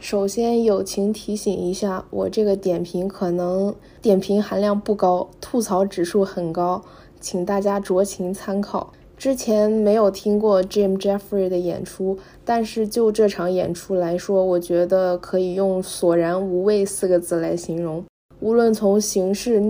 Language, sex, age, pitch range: Chinese, female, 20-39, 185-215 Hz